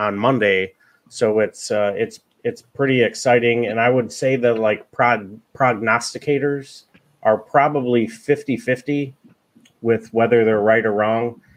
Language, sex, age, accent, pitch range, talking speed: English, male, 30-49, American, 105-120 Hz, 135 wpm